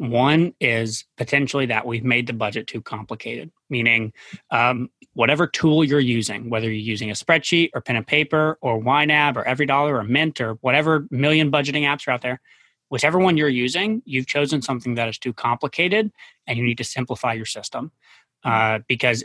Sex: male